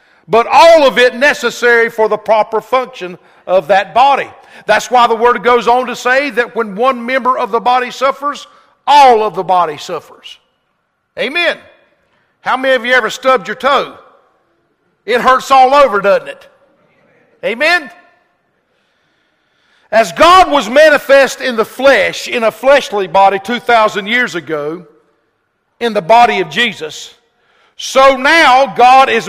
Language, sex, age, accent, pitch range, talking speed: English, male, 50-69, American, 215-275 Hz, 150 wpm